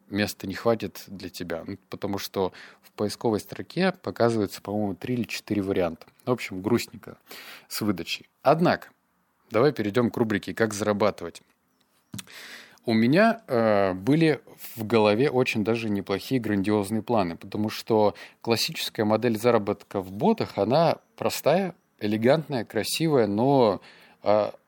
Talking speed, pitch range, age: 125 wpm, 100-130 Hz, 20-39